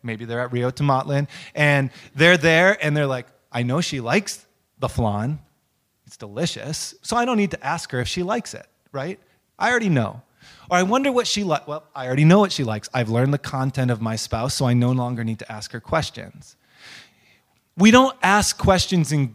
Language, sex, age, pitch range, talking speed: English, male, 20-39, 130-170 Hz, 210 wpm